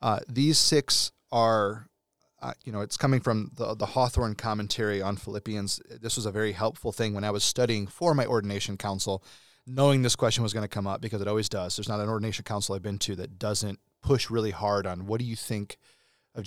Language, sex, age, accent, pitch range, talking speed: English, male, 30-49, American, 105-130 Hz, 220 wpm